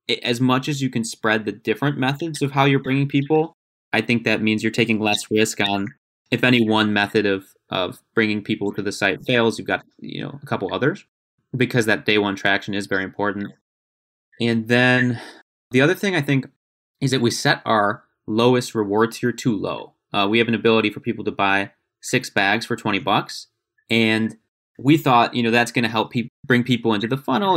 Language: English